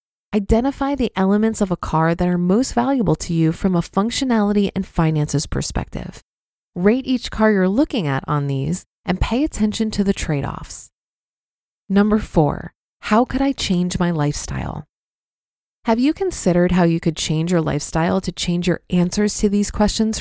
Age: 30-49